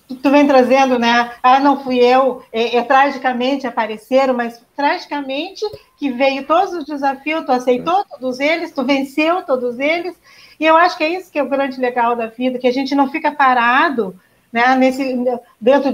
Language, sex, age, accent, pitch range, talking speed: Portuguese, female, 40-59, Brazilian, 245-320 Hz, 185 wpm